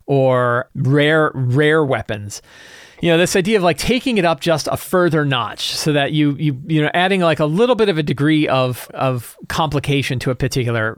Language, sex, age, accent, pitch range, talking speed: English, male, 40-59, American, 130-160 Hz, 200 wpm